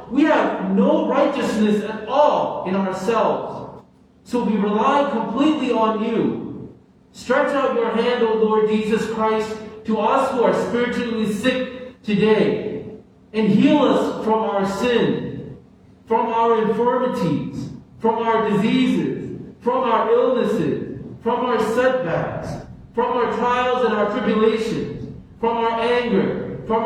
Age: 40-59